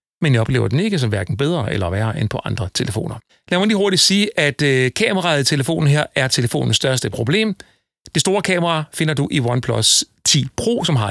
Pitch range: 120-170 Hz